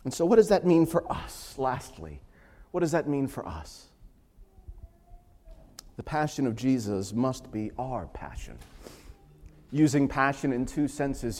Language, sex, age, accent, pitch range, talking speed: English, male, 40-59, American, 110-145 Hz, 145 wpm